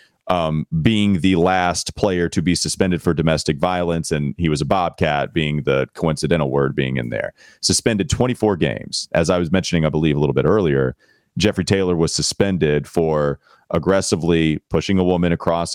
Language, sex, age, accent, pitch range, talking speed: English, male, 30-49, American, 75-90 Hz, 175 wpm